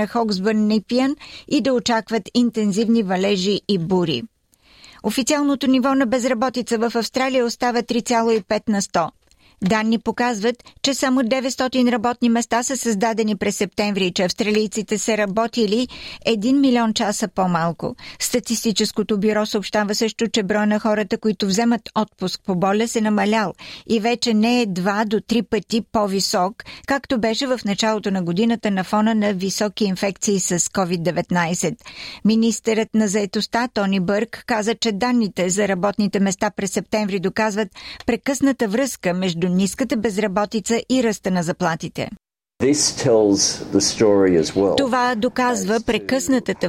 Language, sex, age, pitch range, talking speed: Bulgarian, female, 50-69, 200-235 Hz, 130 wpm